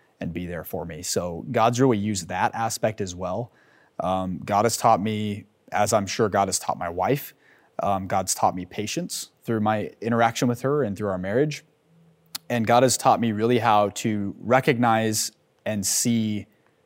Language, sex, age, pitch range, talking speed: English, male, 30-49, 95-115 Hz, 180 wpm